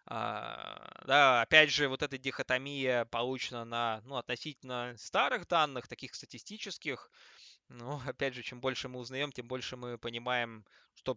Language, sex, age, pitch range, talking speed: Russian, male, 20-39, 115-135 Hz, 140 wpm